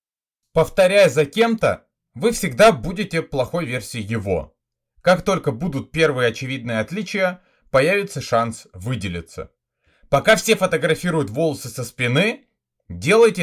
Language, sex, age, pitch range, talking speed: Russian, male, 30-49, 115-180 Hz, 110 wpm